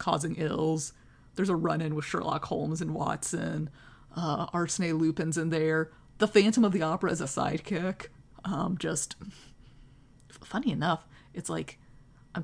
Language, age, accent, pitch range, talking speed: English, 30-49, American, 150-195 Hz, 145 wpm